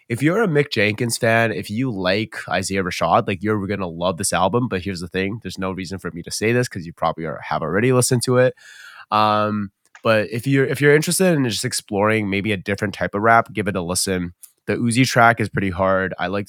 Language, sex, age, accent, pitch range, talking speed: English, male, 20-39, American, 95-115 Hz, 245 wpm